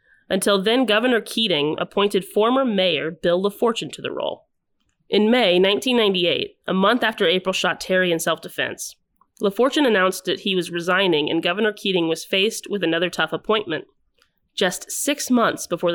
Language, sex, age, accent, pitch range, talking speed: English, female, 30-49, American, 175-225 Hz, 160 wpm